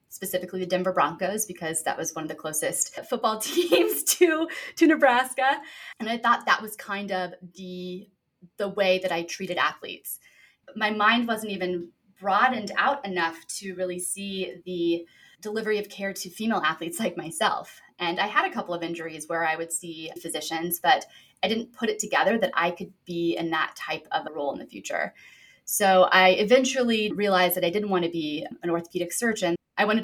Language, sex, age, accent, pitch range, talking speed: English, female, 20-39, American, 170-215 Hz, 190 wpm